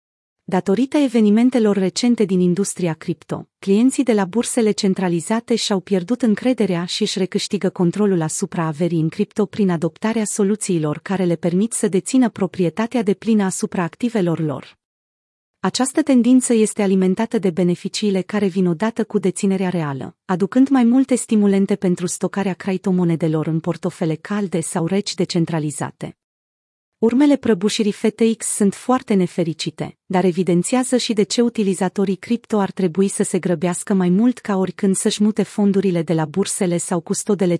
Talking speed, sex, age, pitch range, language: 145 wpm, female, 30-49, 175-220 Hz, Romanian